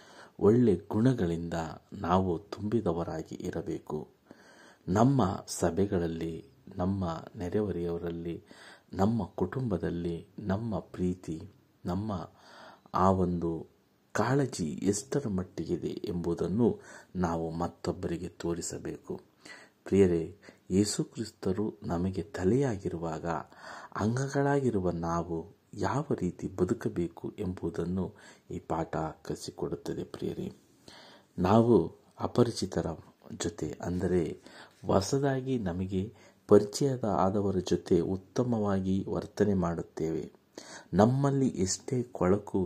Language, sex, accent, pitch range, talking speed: Kannada, male, native, 85-105 Hz, 75 wpm